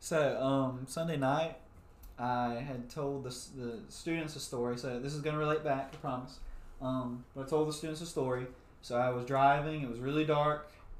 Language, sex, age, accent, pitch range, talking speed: English, male, 20-39, American, 115-140 Hz, 200 wpm